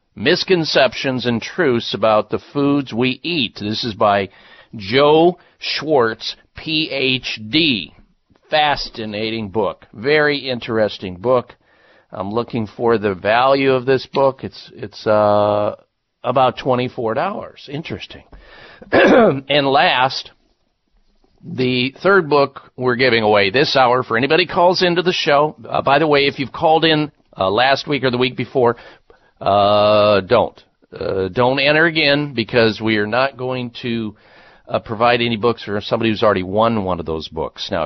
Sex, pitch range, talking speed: male, 110-150 Hz, 145 wpm